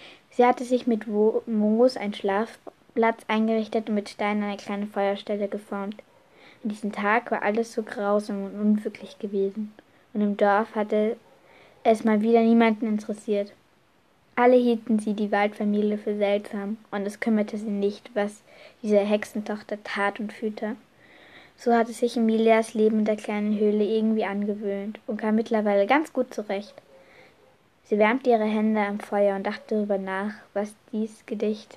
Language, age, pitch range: German, 20-39, 205-225 Hz